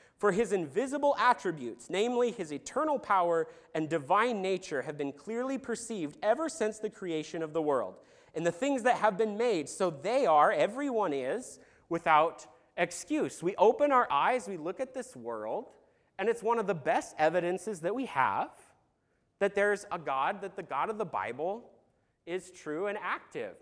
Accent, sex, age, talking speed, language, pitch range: American, male, 30-49, 175 wpm, English, 155-220 Hz